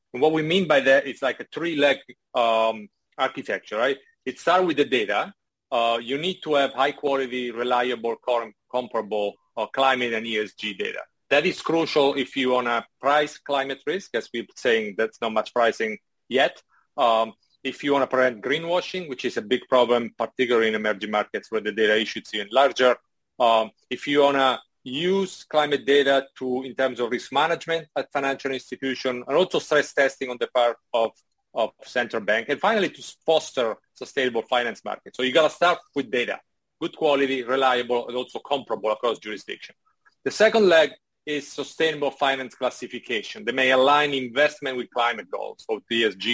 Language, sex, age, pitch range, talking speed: English, male, 40-59, 120-145 Hz, 175 wpm